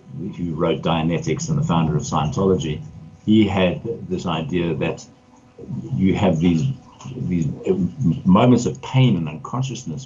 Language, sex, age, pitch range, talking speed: English, male, 50-69, 95-130 Hz, 130 wpm